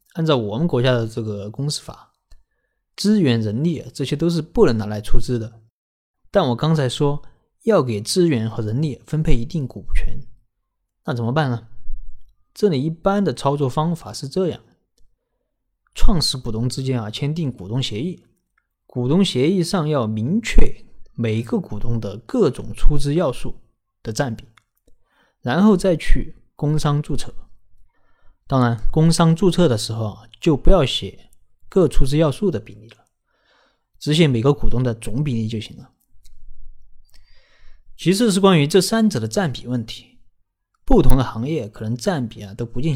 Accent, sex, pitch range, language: native, male, 110-155 Hz, Chinese